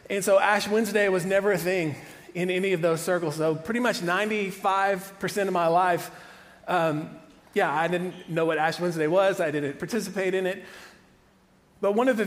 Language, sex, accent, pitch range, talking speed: English, male, American, 175-205 Hz, 185 wpm